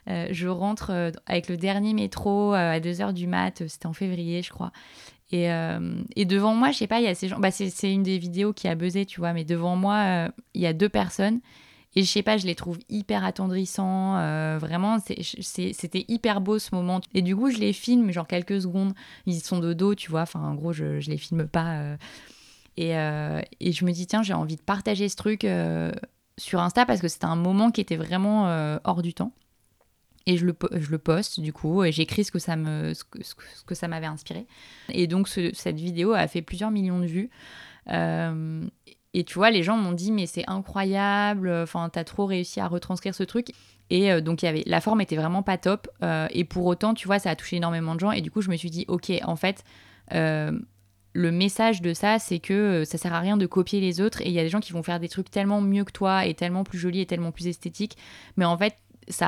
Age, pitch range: 20-39, 165-200 Hz